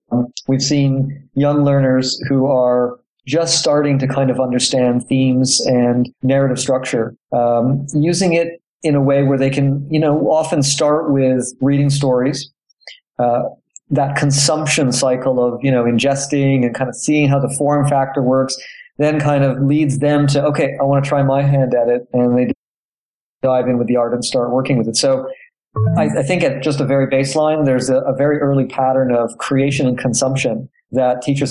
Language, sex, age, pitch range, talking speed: English, male, 40-59, 125-145 Hz, 185 wpm